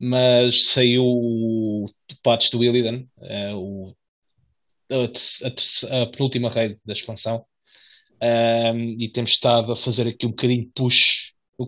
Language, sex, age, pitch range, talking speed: English, male, 20-39, 115-135 Hz, 115 wpm